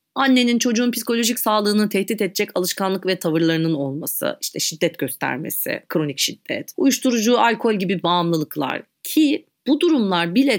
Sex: female